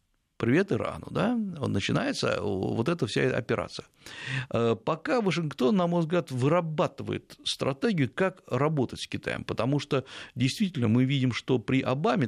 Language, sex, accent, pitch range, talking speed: Russian, male, native, 115-170 Hz, 130 wpm